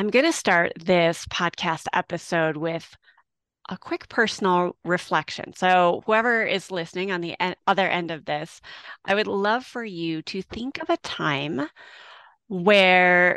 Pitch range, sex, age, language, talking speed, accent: 175-235 Hz, female, 30-49, English, 155 wpm, American